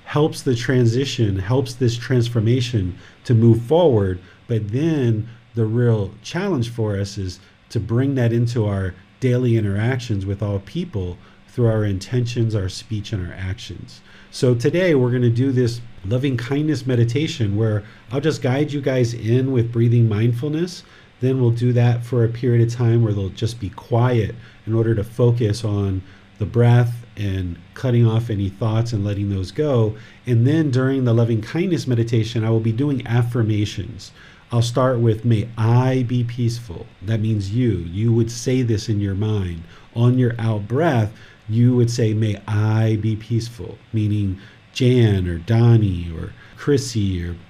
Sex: male